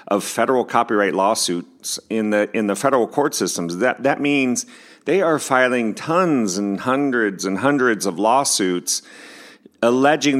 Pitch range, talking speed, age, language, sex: 95-120 Hz, 145 wpm, 40-59, English, male